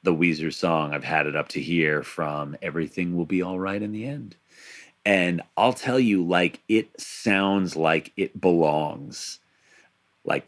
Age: 30-49